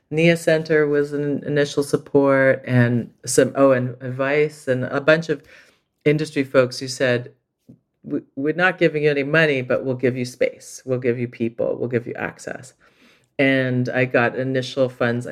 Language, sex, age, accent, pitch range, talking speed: English, female, 40-59, American, 125-145 Hz, 170 wpm